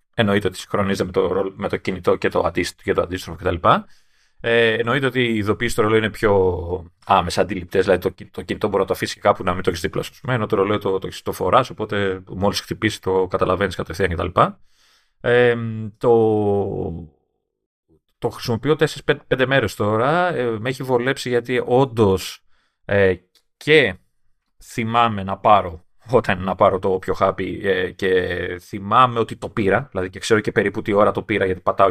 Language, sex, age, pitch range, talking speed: Greek, male, 30-49, 100-135 Hz, 180 wpm